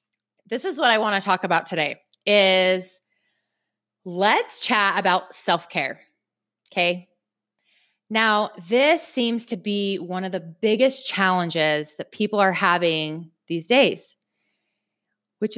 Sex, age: female, 20-39